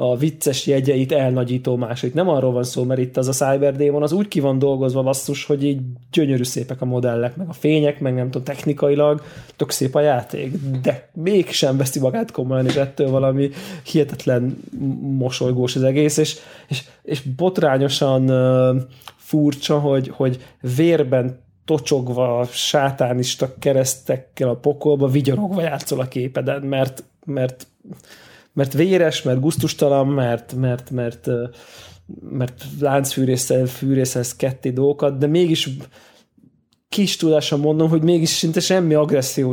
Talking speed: 145 wpm